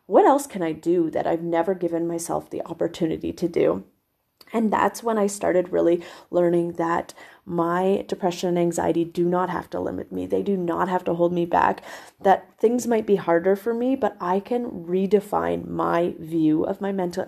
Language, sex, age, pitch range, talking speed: English, female, 30-49, 170-210 Hz, 195 wpm